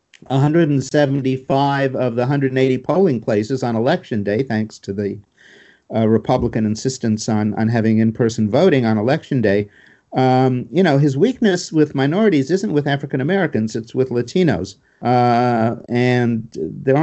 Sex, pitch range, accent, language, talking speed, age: male, 115-145 Hz, American, English, 140 wpm, 50-69